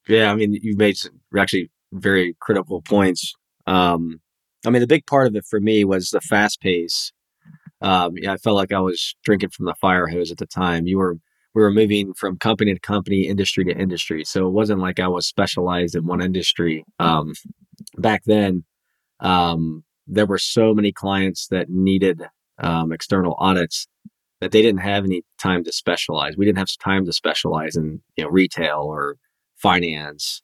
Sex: male